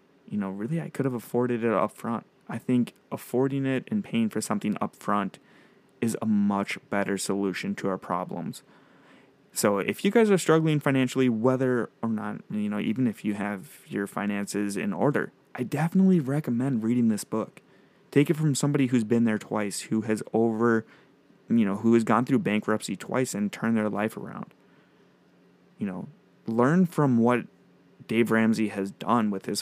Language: English